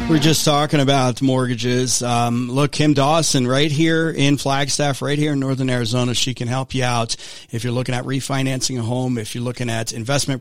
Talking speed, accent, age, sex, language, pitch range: 200 wpm, American, 40-59, male, English, 115-145 Hz